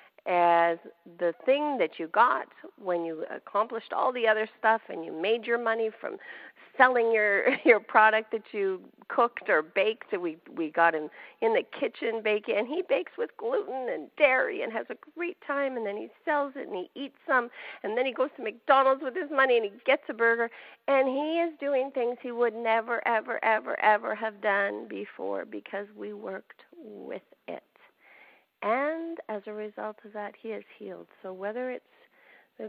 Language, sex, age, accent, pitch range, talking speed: English, female, 40-59, American, 200-270 Hz, 190 wpm